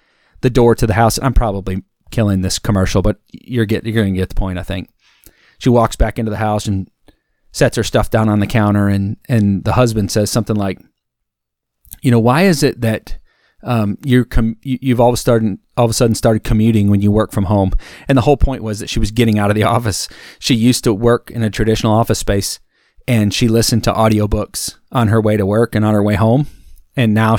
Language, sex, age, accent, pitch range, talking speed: English, male, 30-49, American, 105-120 Hz, 225 wpm